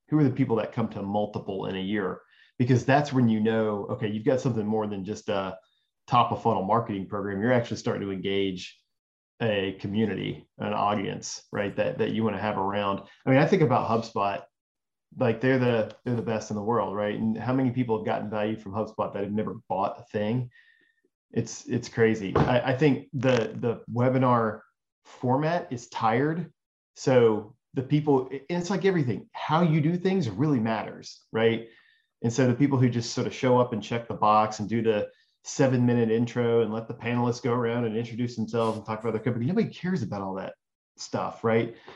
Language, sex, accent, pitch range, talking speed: English, male, American, 110-135 Hz, 205 wpm